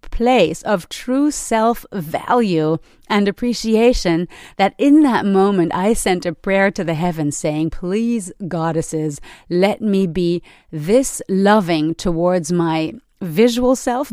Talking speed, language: 125 wpm, English